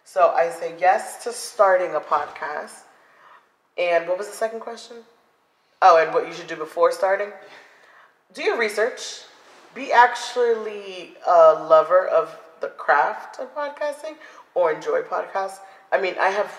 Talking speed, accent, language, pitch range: 150 wpm, American, English, 155-240 Hz